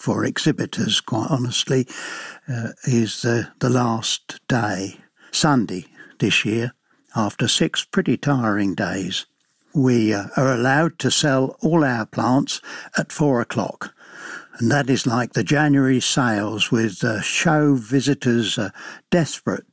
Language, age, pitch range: English, 60-79, 115-135 Hz